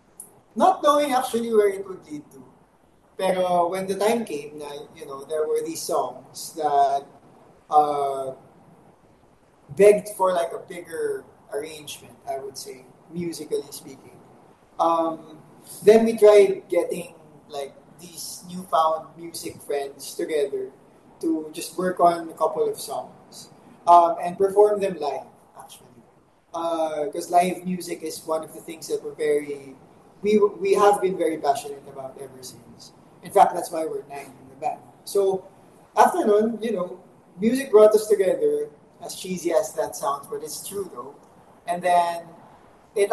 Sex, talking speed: male, 150 wpm